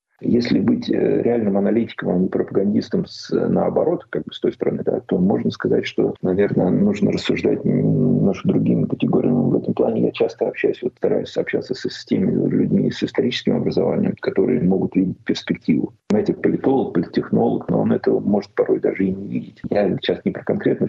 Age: 40-59